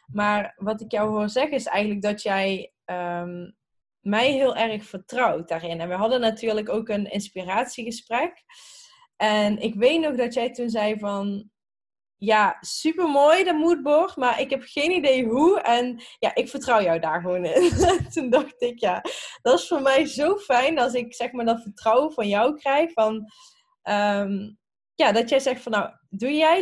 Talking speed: 180 wpm